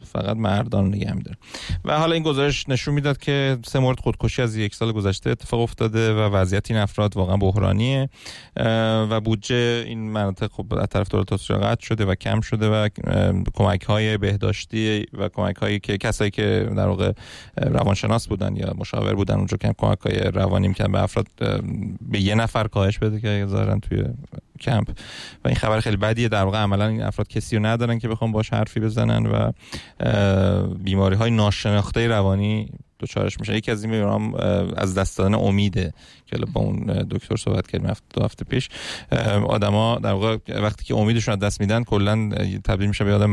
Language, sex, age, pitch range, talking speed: Persian, male, 30-49, 100-115 Hz, 170 wpm